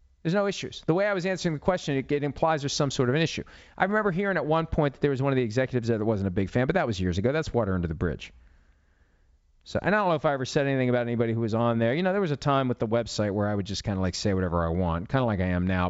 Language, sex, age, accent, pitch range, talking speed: English, male, 40-59, American, 90-135 Hz, 330 wpm